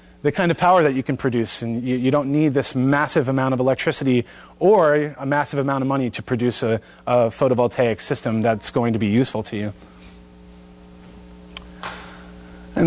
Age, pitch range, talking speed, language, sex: 30-49, 115-145 Hz, 175 wpm, English, male